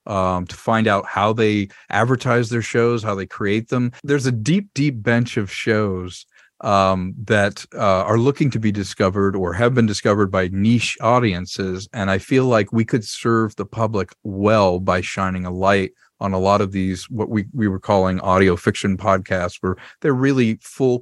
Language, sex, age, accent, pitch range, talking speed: English, male, 40-59, American, 100-130 Hz, 190 wpm